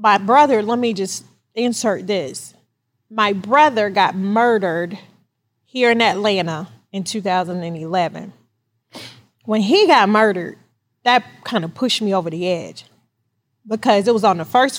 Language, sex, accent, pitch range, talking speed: English, female, American, 180-240 Hz, 140 wpm